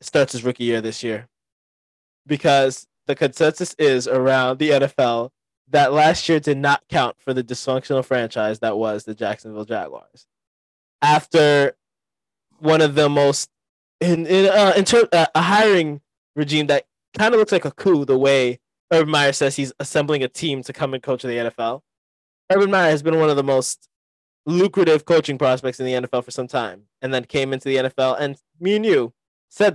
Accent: American